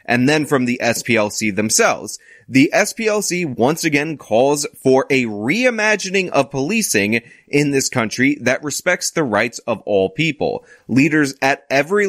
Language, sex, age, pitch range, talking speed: English, male, 20-39, 120-170 Hz, 145 wpm